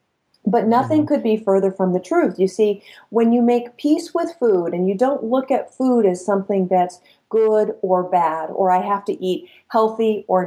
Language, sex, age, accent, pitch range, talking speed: English, female, 40-59, American, 190-245 Hz, 200 wpm